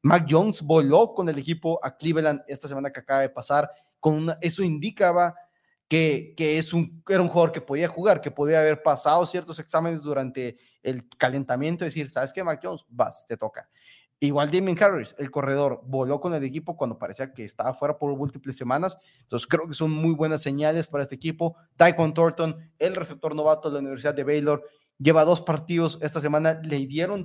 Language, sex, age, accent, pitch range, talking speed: Spanish, male, 20-39, Mexican, 140-165 Hz, 200 wpm